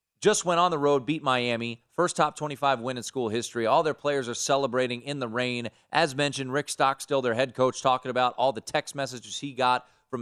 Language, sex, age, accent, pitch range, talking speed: English, male, 30-49, American, 110-140 Hz, 230 wpm